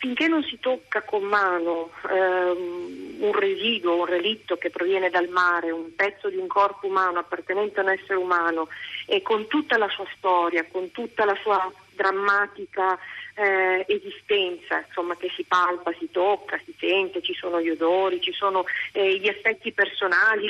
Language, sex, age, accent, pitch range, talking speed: Italian, female, 40-59, native, 180-240 Hz, 165 wpm